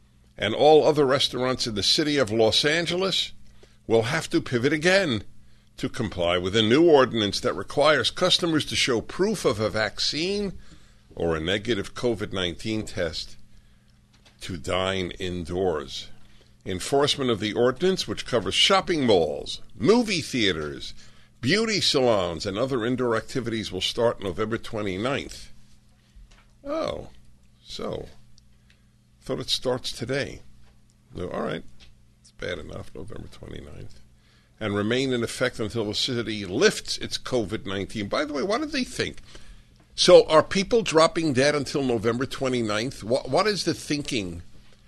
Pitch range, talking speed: 105-140 Hz, 135 wpm